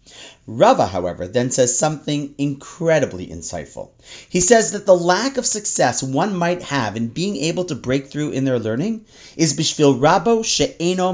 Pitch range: 130-185 Hz